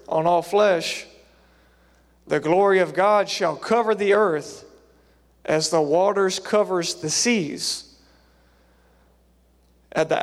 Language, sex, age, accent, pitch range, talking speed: English, male, 40-59, American, 150-220 Hz, 110 wpm